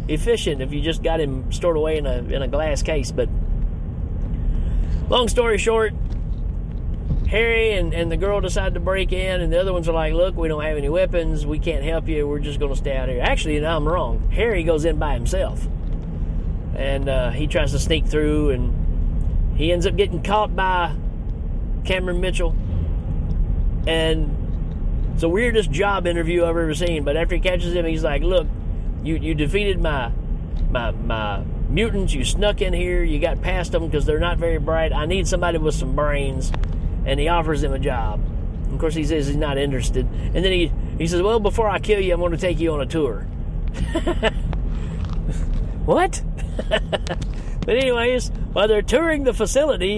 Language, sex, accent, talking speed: English, male, American, 190 wpm